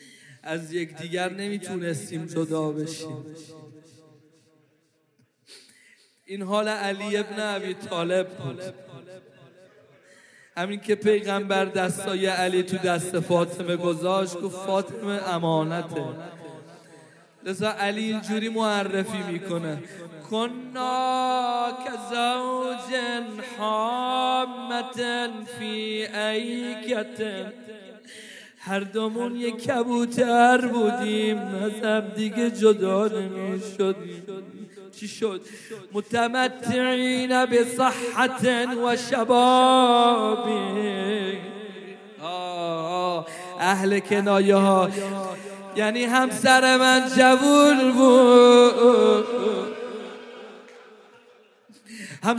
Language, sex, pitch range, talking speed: Arabic, male, 185-240 Hz, 45 wpm